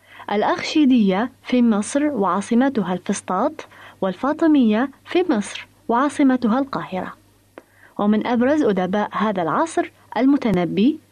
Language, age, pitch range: Arabic, 20-39, 195-280 Hz